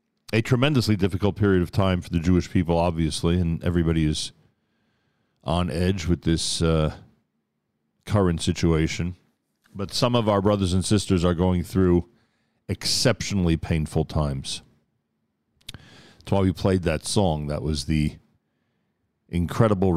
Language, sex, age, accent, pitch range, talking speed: English, male, 40-59, American, 80-100 Hz, 130 wpm